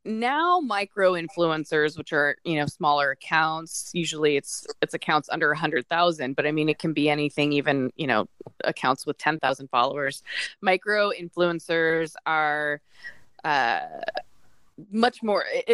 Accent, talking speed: American, 140 wpm